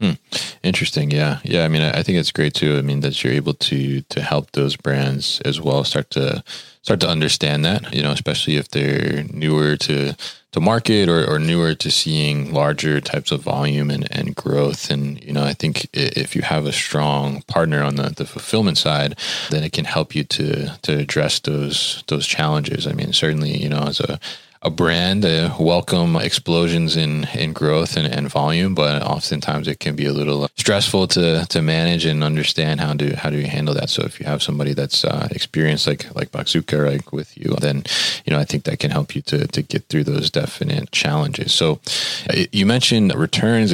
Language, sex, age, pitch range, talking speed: English, male, 20-39, 70-80 Hz, 205 wpm